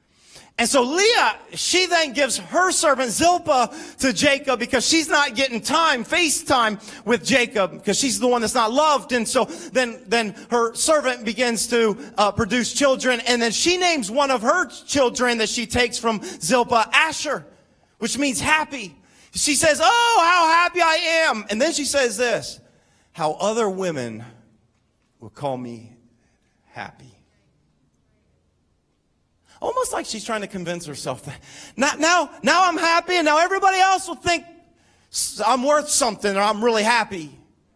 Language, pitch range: English, 230-315 Hz